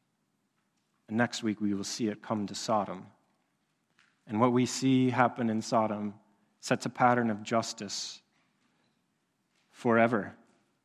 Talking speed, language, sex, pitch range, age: 125 wpm, English, male, 110-130 Hz, 30-49